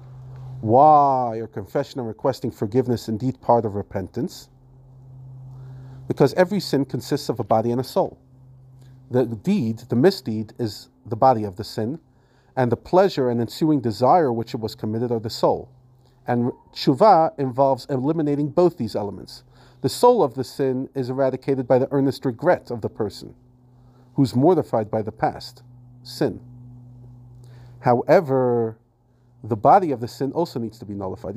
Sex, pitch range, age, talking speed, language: male, 120-140 Hz, 40-59, 155 wpm, English